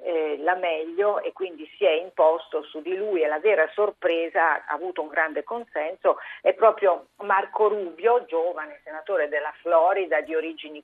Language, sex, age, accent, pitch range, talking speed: Italian, female, 50-69, native, 165-230 Hz, 165 wpm